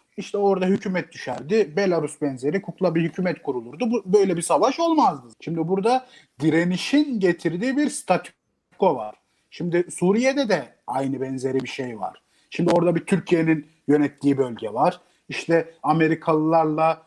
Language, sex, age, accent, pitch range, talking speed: Turkish, male, 40-59, native, 145-190 Hz, 135 wpm